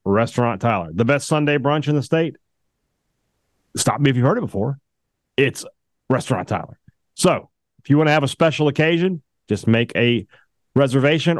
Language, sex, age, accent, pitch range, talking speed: English, male, 40-59, American, 110-140 Hz, 170 wpm